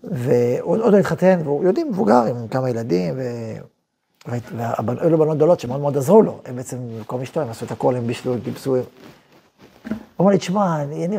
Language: Hebrew